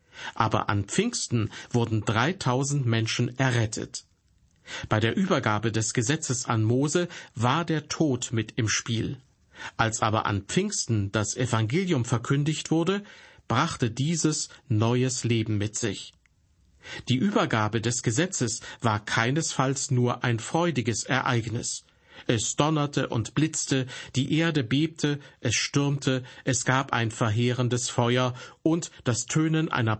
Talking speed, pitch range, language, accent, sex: 125 wpm, 115-140 Hz, German, German, male